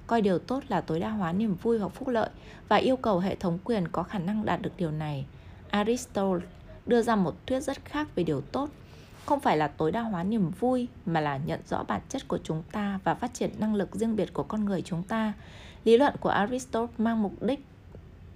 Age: 20-39